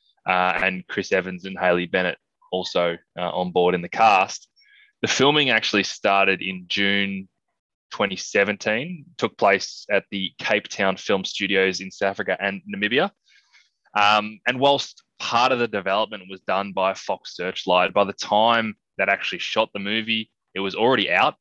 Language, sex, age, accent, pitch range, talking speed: English, male, 20-39, Australian, 90-110 Hz, 165 wpm